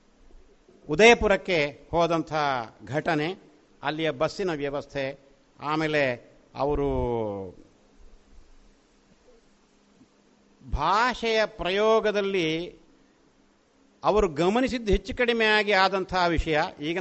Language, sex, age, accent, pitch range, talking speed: Kannada, male, 50-69, native, 135-215 Hz, 65 wpm